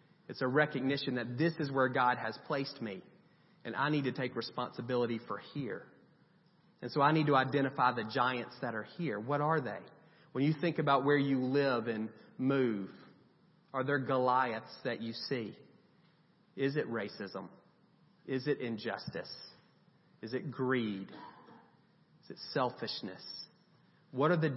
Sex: male